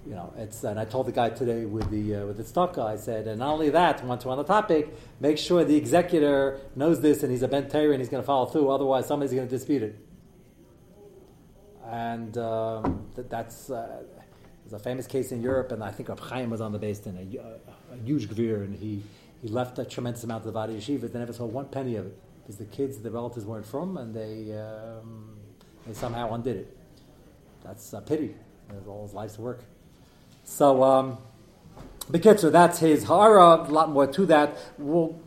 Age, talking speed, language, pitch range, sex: 40-59, 220 wpm, English, 120-170 Hz, male